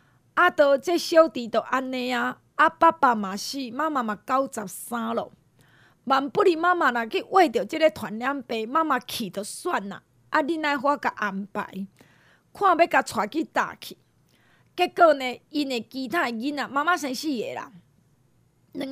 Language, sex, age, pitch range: Chinese, female, 30-49, 235-340 Hz